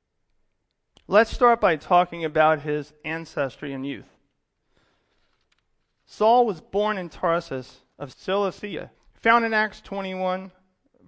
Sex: male